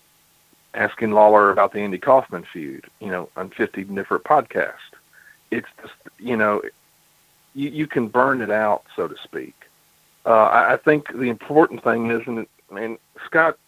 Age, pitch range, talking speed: 40-59, 105-145 Hz, 160 wpm